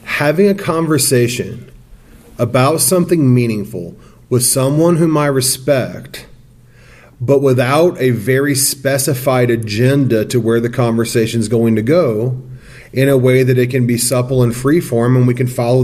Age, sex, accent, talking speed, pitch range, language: 40-59, male, American, 150 wpm, 115-145 Hz, English